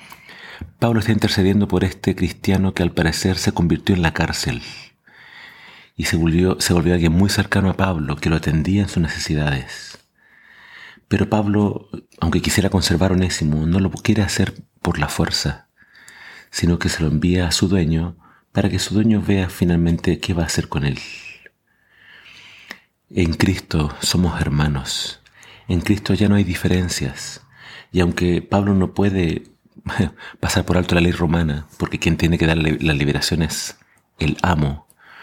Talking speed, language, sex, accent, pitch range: 160 wpm, Spanish, male, Argentinian, 80-95 Hz